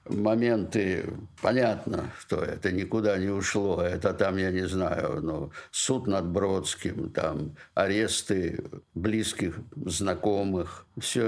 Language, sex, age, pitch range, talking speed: Russian, male, 60-79, 90-115 Hz, 110 wpm